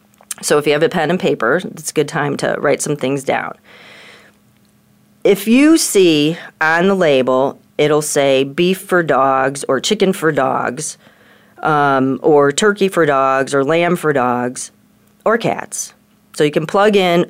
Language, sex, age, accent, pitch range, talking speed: English, female, 40-59, American, 145-205 Hz, 165 wpm